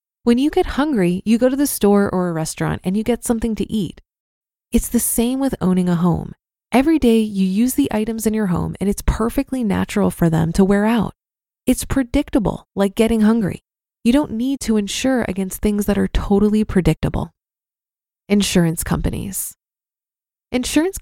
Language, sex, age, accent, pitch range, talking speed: English, female, 20-39, American, 190-245 Hz, 175 wpm